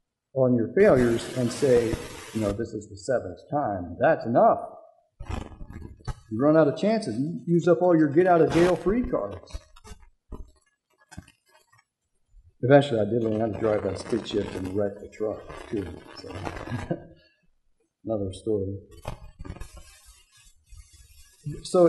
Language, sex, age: English, male, 50-69